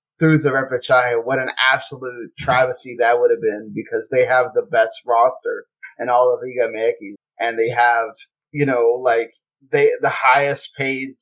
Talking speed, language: 170 wpm, English